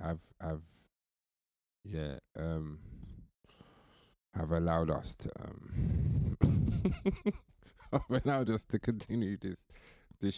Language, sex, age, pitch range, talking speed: English, male, 20-39, 85-110 Hz, 95 wpm